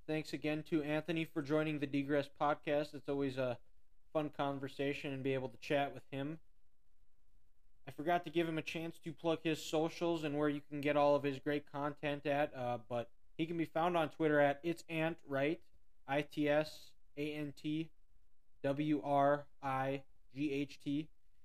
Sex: male